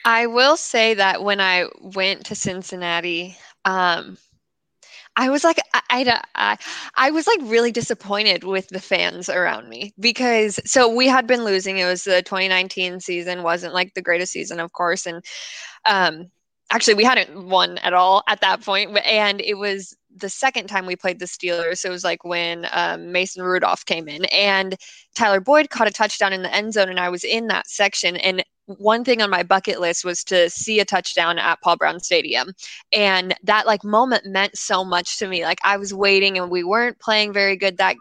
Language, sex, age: English, female, 20-39